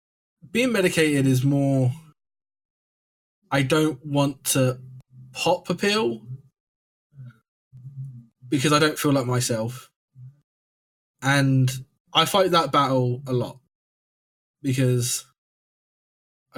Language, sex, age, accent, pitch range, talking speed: English, male, 20-39, British, 125-145 Hz, 90 wpm